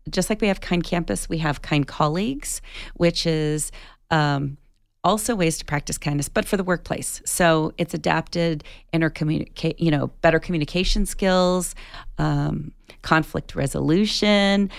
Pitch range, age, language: 150-185 Hz, 40-59, English